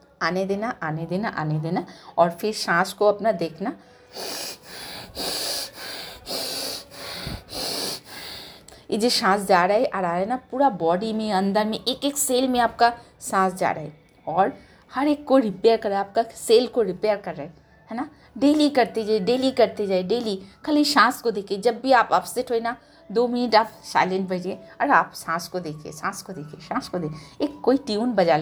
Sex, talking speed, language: female, 190 wpm, Hindi